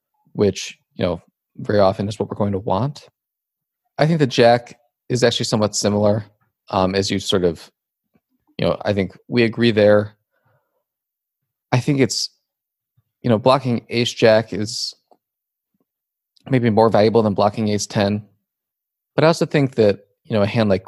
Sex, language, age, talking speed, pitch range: male, English, 20-39, 165 wpm, 100-130 Hz